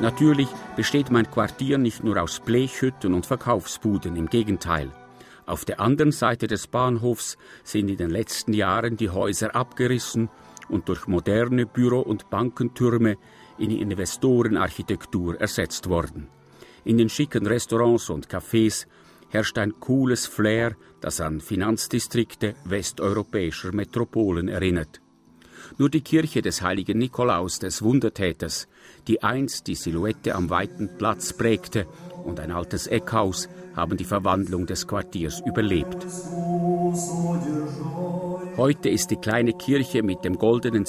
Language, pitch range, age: German, 95-125 Hz, 50-69